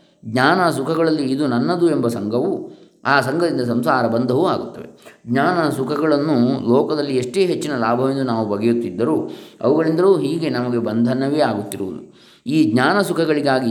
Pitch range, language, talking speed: 115-140 Hz, Kannada, 115 wpm